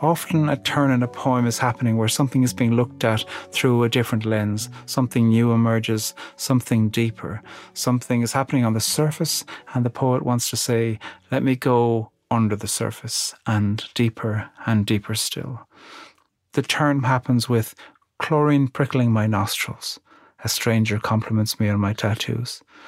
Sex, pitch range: male, 110-125 Hz